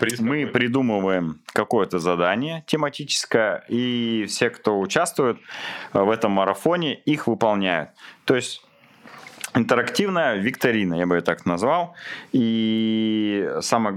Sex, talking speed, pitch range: male, 105 wpm, 90-110 Hz